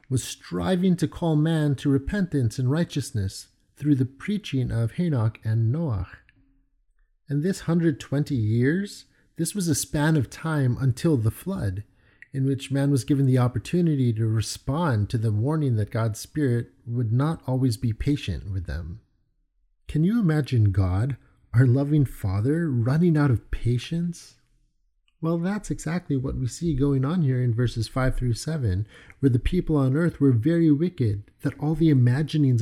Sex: male